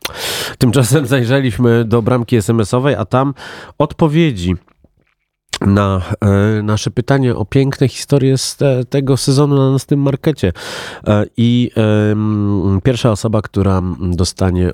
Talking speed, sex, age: 125 wpm, male, 40-59